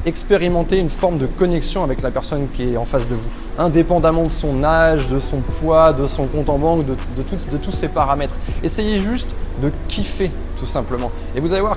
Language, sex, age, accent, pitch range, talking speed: French, male, 20-39, French, 135-175 Hz, 220 wpm